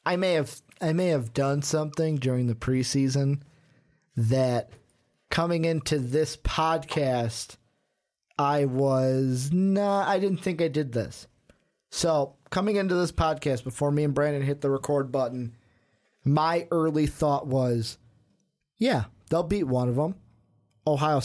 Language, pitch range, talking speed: English, 130-160 Hz, 140 wpm